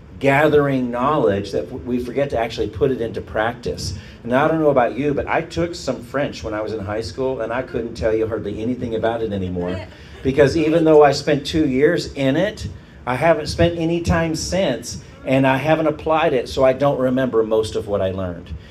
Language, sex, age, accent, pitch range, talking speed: English, male, 40-59, American, 110-150 Hz, 215 wpm